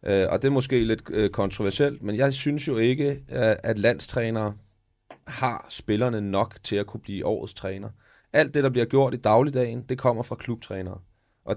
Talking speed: 190 wpm